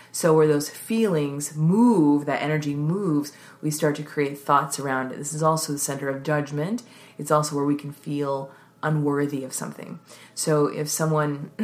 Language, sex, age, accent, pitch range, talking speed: English, female, 30-49, American, 145-170 Hz, 175 wpm